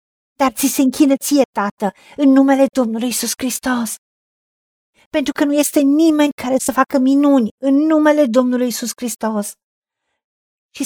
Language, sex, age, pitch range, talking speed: Romanian, female, 50-69, 235-290 Hz, 140 wpm